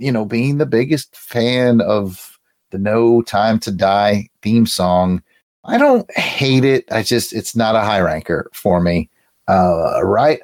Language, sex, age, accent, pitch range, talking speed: English, male, 30-49, American, 105-145 Hz, 165 wpm